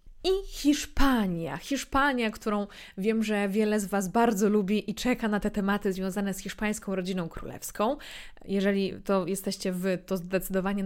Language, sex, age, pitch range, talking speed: Polish, female, 20-39, 185-225 Hz, 150 wpm